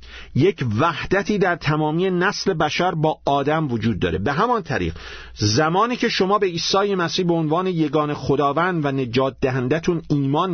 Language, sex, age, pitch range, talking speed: Persian, male, 50-69, 120-185 Hz, 155 wpm